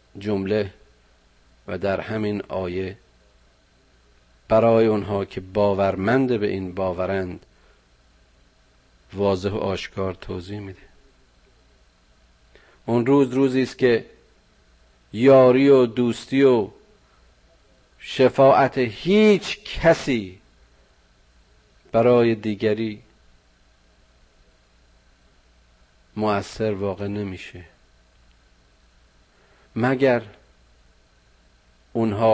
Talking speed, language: 65 wpm, Persian